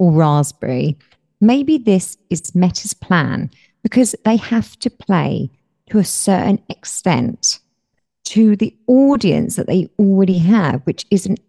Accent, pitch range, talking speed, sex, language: British, 150-210 Hz, 135 wpm, female, English